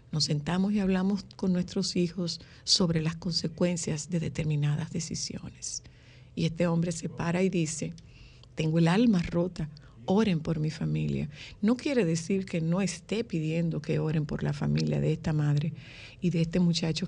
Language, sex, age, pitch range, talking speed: Spanish, female, 50-69, 140-180 Hz, 165 wpm